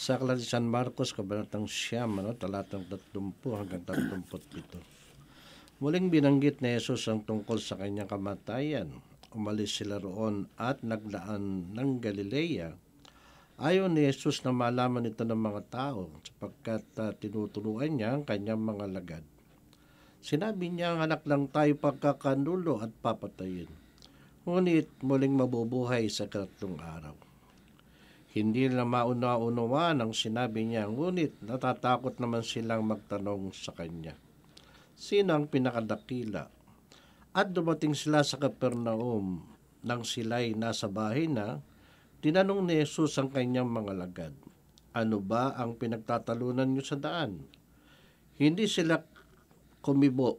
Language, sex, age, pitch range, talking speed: Filipino, male, 50-69, 105-135 Hz, 125 wpm